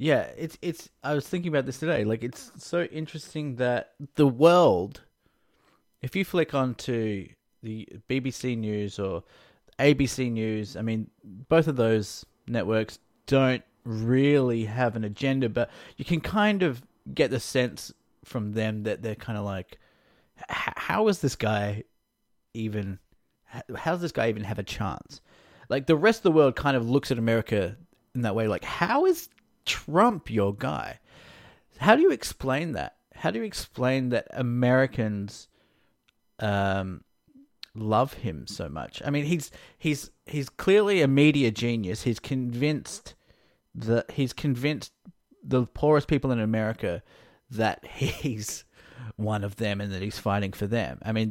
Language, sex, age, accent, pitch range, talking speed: English, male, 20-39, Australian, 110-145 Hz, 155 wpm